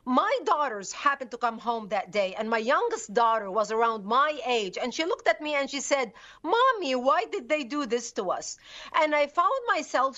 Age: 50-69